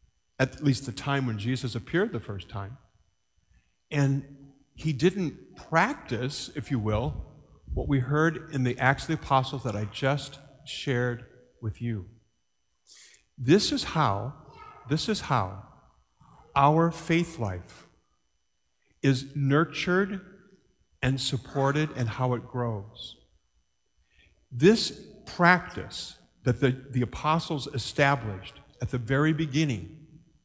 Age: 50-69